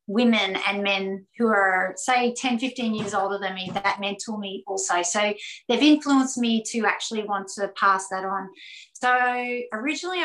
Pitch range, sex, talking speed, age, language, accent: 200-235 Hz, female, 170 wpm, 30-49, English, Australian